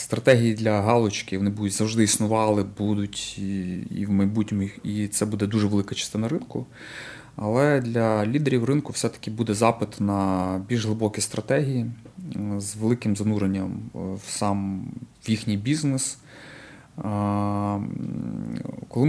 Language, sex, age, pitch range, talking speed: Ukrainian, male, 30-49, 100-120 Hz, 115 wpm